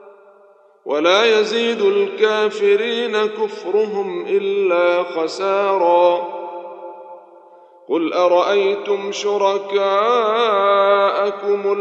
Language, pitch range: Arabic, 170-200 Hz